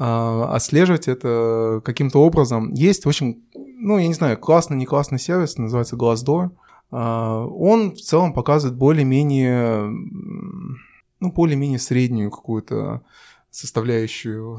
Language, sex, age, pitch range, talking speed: Russian, male, 20-39, 120-160 Hz, 115 wpm